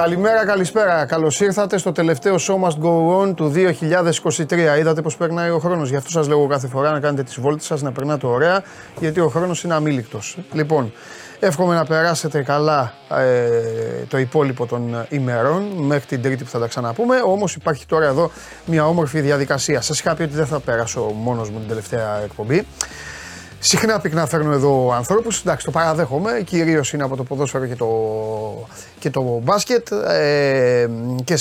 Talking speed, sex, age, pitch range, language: 175 wpm, male, 30-49, 130-170 Hz, Greek